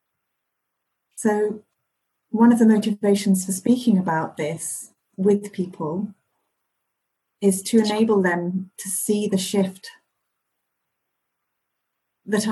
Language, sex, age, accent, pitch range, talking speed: English, female, 40-59, British, 180-205 Hz, 95 wpm